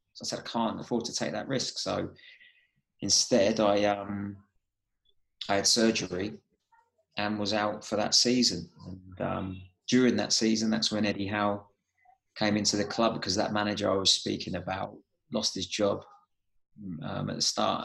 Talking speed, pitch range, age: 170 wpm, 95-115 Hz, 30-49